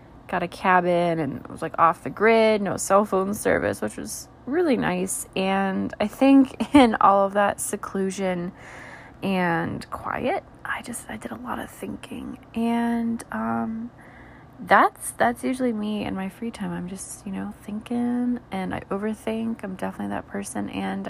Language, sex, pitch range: English, female, 180-230 Hz